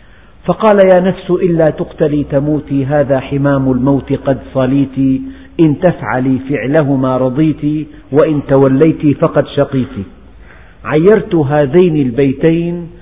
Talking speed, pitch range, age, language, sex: 100 wpm, 125-165 Hz, 50-69, Arabic, male